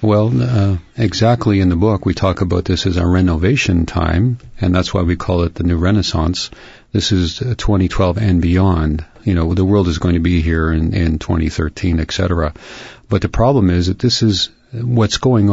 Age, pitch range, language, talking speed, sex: 50-69, 85-105 Hz, English, 195 wpm, male